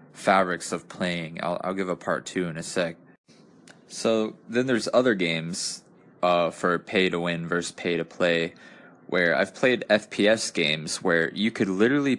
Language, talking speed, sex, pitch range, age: English, 170 wpm, male, 85-105 Hz, 20-39